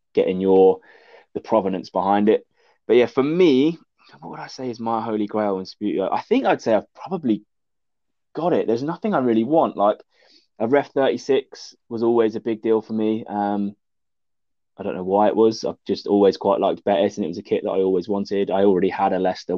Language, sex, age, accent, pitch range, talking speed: English, male, 20-39, British, 95-110 Hz, 215 wpm